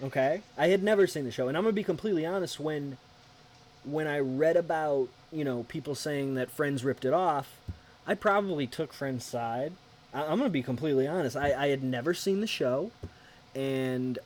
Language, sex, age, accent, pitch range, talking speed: English, male, 20-39, American, 120-160 Hz, 200 wpm